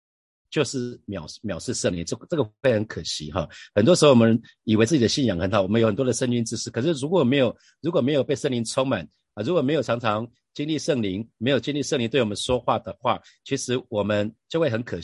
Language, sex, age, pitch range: Chinese, male, 50-69, 105-135 Hz